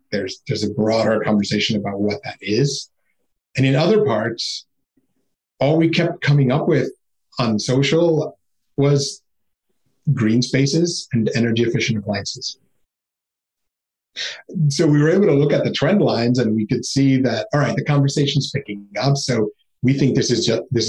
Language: English